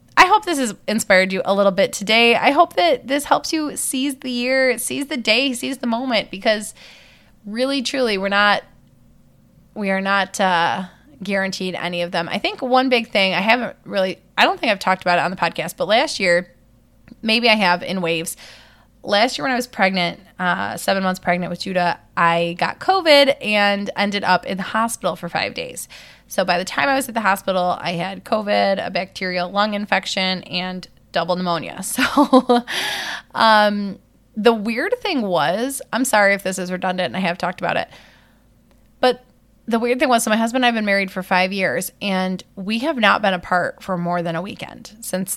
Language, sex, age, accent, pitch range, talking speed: English, female, 20-39, American, 180-235 Hz, 200 wpm